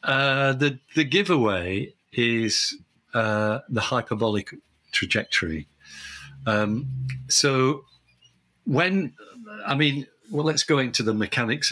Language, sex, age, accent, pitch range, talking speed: English, male, 50-69, British, 105-135 Hz, 100 wpm